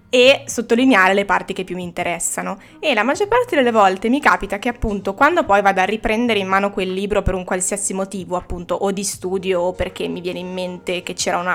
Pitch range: 190-245 Hz